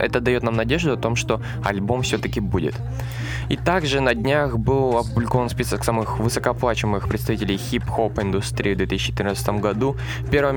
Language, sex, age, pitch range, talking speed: Russian, male, 20-39, 105-120 Hz, 150 wpm